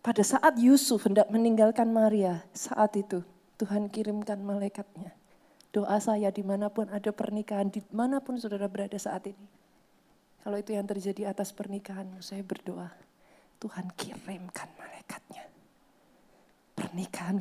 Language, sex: Indonesian, female